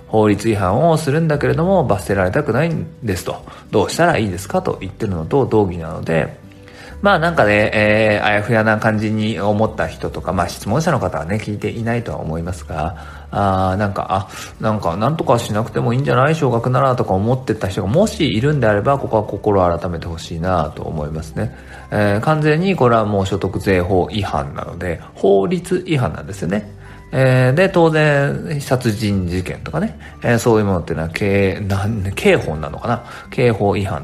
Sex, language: male, Japanese